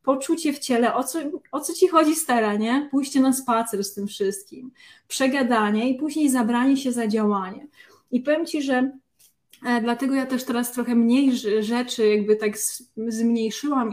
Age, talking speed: 20-39, 170 wpm